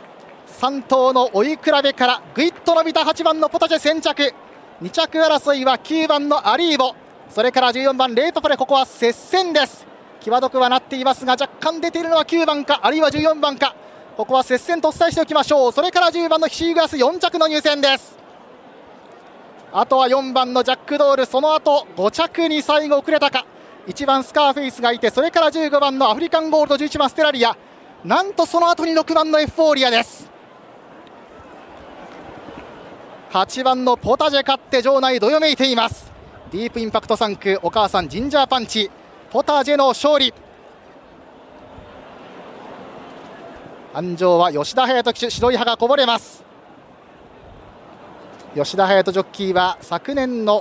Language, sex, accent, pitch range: Japanese, male, native, 235-305 Hz